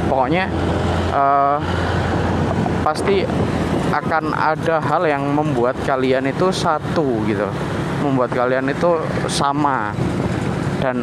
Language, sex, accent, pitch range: Indonesian, male, native, 130-165 Hz